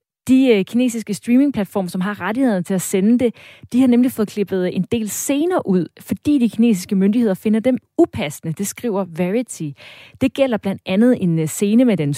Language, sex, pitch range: Danish, female, 185-250 Hz